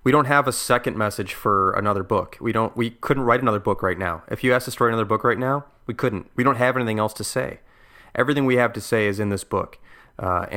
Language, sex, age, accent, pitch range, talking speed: English, male, 30-49, American, 100-120 Hz, 260 wpm